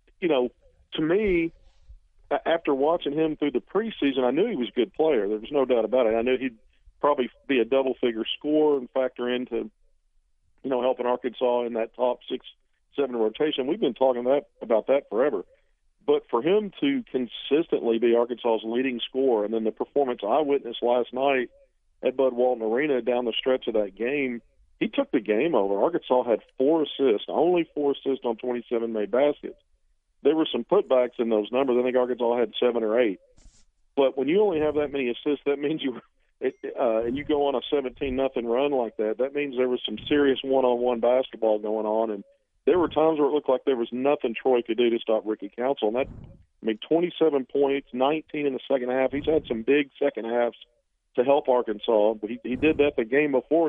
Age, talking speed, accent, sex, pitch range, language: 50-69, 210 wpm, American, male, 120-145 Hz, English